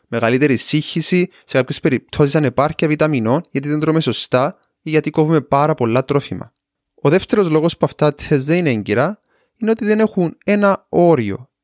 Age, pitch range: 20-39, 135-185 Hz